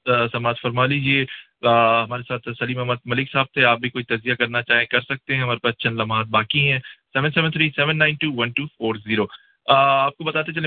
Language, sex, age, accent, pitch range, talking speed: English, male, 20-39, Indian, 120-140 Hz, 155 wpm